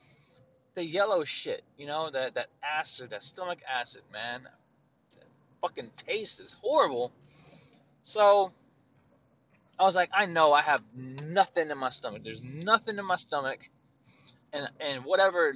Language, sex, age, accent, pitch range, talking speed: English, male, 20-39, American, 130-195 Hz, 145 wpm